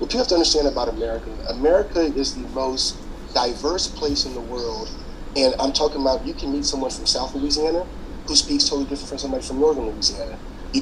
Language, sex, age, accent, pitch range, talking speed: English, male, 30-49, American, 130-150 Hz, 205 wpm